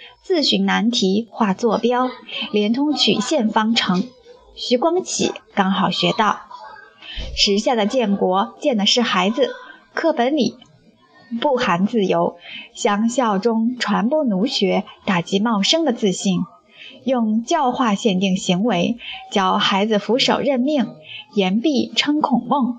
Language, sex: Chinese, female